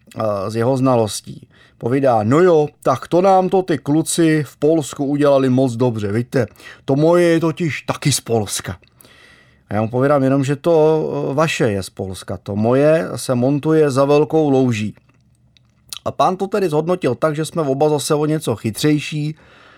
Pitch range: 115-140 Hz